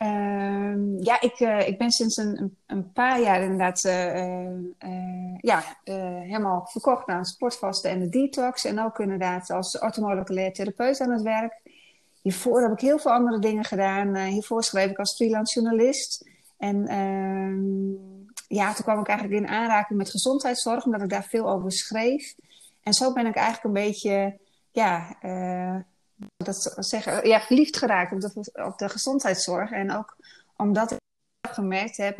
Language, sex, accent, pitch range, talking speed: Dutch, female, Dutch, 190-225 Hz, 160 wpm